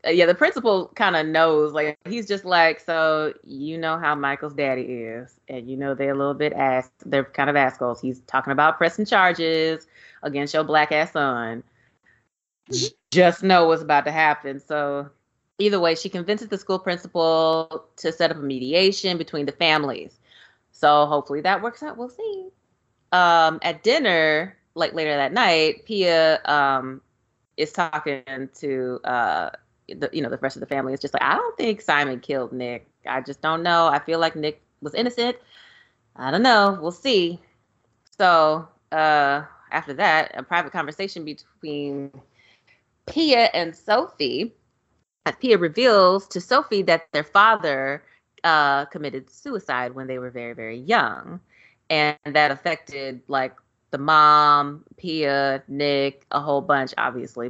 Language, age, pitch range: English, 20-39, 135-170 Hz